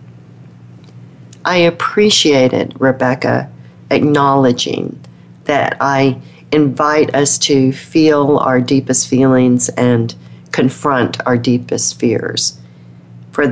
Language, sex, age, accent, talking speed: English, female, 40-59, American, 85 wpm